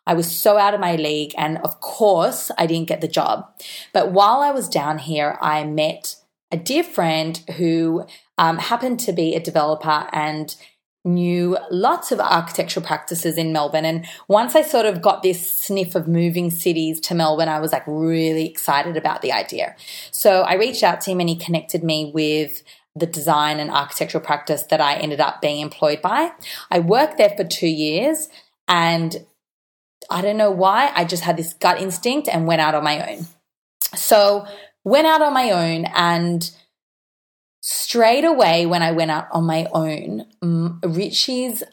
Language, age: English, 30-49